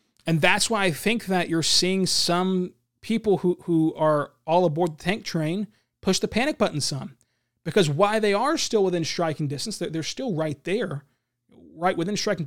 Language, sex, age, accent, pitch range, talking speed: English, male, 30-49, American, 140-205 Hz, 190 wpm